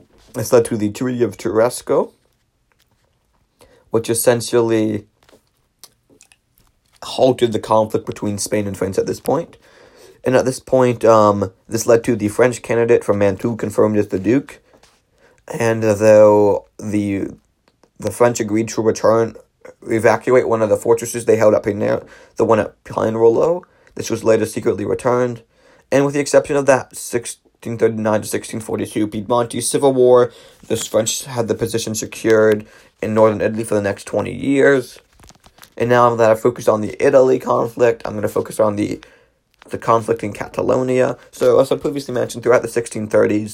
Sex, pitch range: male, 110-130 Hz